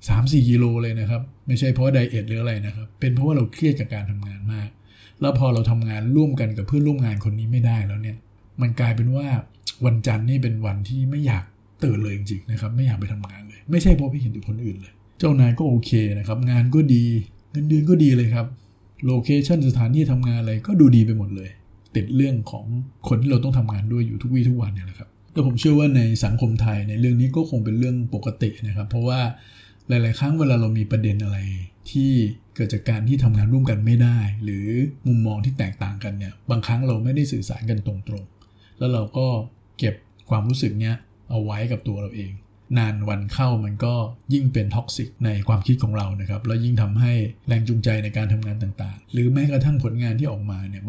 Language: Thai